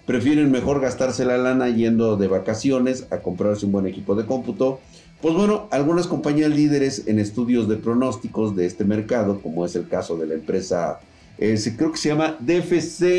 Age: 50-69